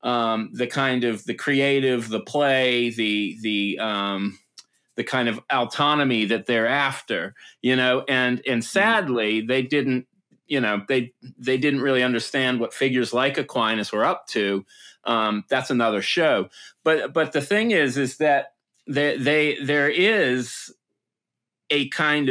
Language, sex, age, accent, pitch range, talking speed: English, male, 30-49, American, 115-140 Hz, 150 wpm